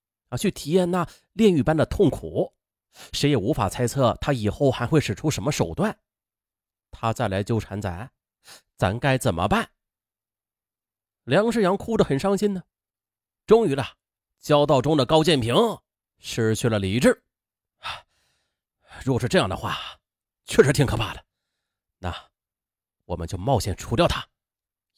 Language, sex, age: Chinese, male, 30-49